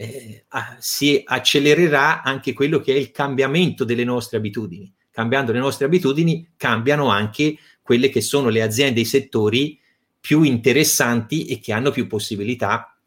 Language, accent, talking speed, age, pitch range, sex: Italian, native, 145 wpm, 30-49, 120-155 Hz, male